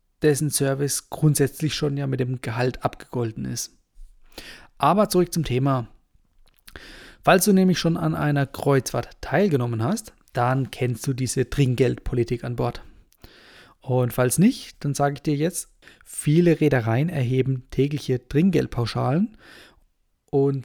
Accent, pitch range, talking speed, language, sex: German, 125-160 Hz, 130 wpm, German, male